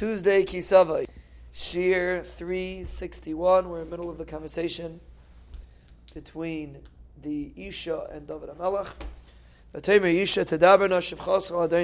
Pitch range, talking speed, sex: 145-185 Hz, 80 wpm, male